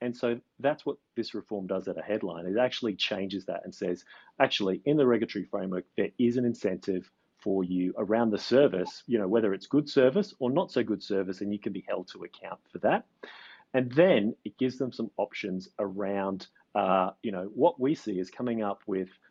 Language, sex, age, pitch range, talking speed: English, male, 30-49, 95-120 Hz, 210 wpm